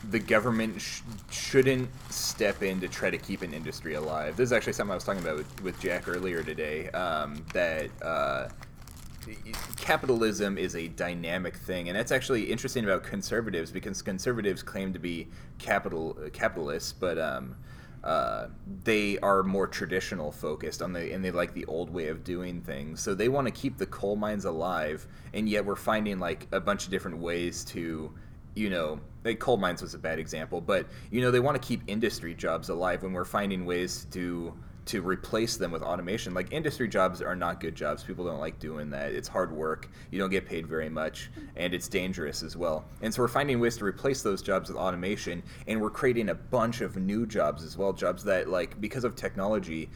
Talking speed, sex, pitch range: 200 wpm, male, 85-110 Hz